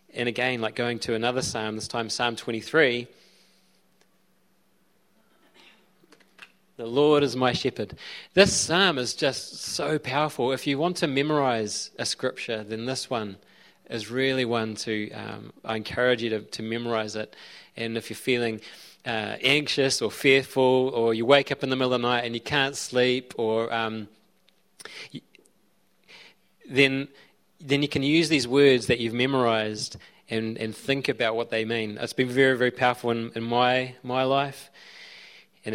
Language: English